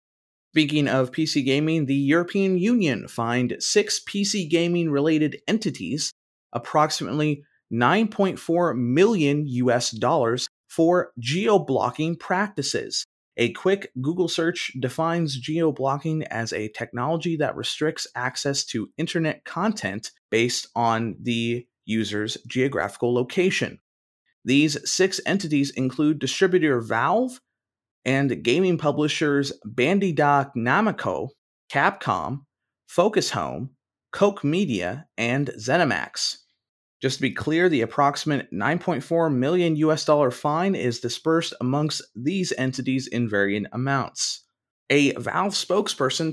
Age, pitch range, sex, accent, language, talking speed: 30-49, 125-165 Hz, male, American, English, 105 wpm